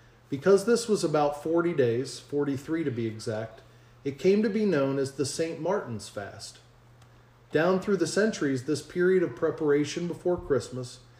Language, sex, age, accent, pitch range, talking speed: English, male, 40-59, American, 120-155 Hz, 160 wpm